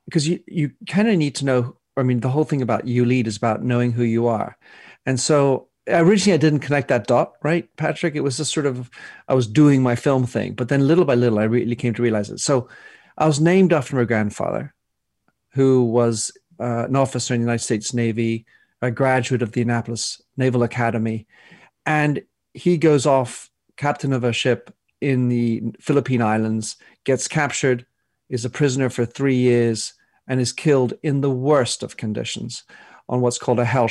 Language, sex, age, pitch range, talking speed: English, male, 40-59, 120-145 Hz, 195 wpm